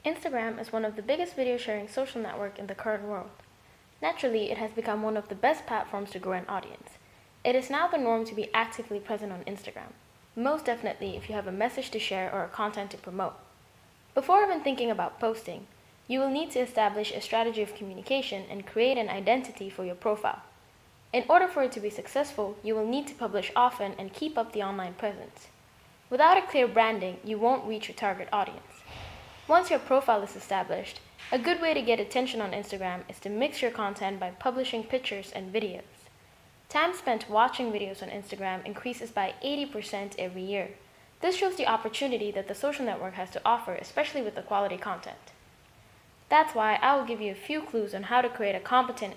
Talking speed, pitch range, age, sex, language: 205 wpm, 200-255 Hz, 10-29, female, French